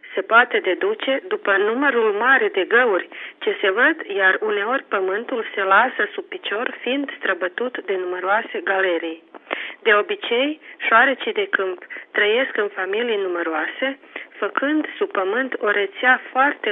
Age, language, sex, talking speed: 30-49, Romanian, female, 135 wpm